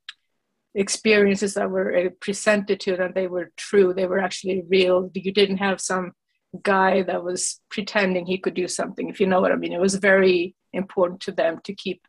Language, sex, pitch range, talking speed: English, female, 180-195 Hz, 190 wpm